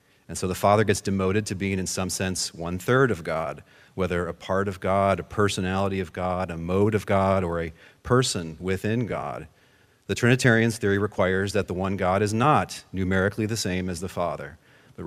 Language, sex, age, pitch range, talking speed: English, male, 40-59, 90-110 Hz, 195 wpm